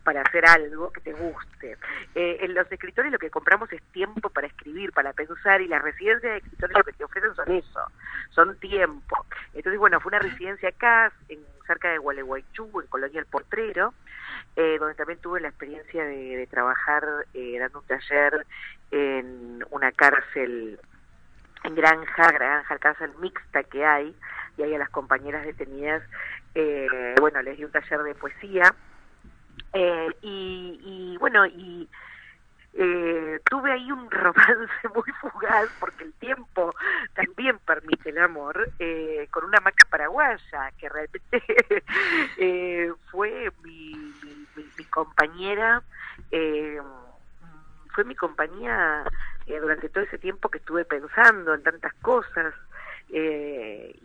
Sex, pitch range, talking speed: female, 150-195 Hz, 145 wpm